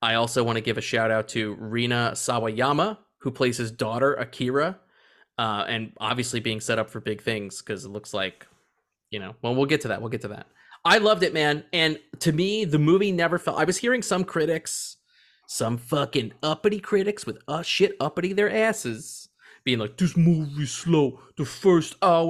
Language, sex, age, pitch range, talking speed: English, male, 30-49, 125-185 Hz, 200 wpm